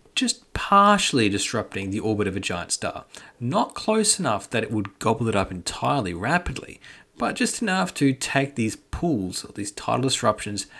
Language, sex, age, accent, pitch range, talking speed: English, male, 30-49, Australian, 105-145 Hz, 170 wpm